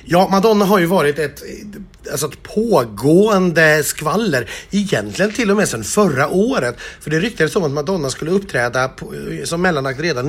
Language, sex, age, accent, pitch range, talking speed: Swedish, male, 30-49, native, 140-190 Hz, 170 wpm